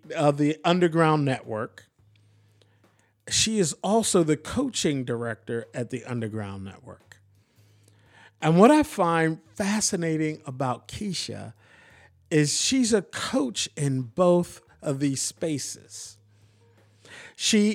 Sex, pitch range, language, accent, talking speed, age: male, 115-170 Hz, English, American, 105 wpm, 50-69